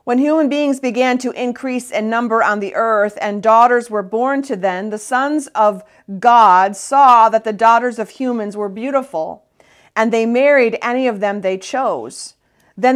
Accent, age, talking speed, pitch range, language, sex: American, 40-59, 175 wpm, 190-235 Hz, English, female